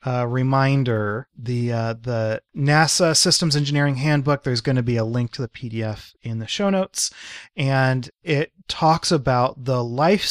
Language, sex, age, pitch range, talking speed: English, male, 30-49, 120-150 Hz, 165 wpm